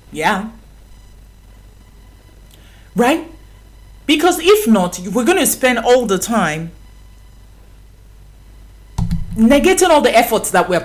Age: 40-59